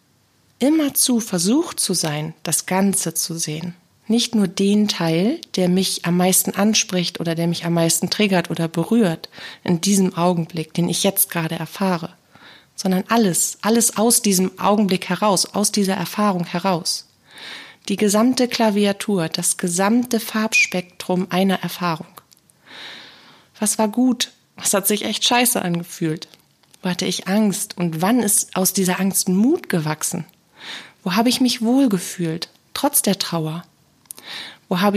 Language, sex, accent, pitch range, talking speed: German, female, German, 175-215 Hz, 145 wpm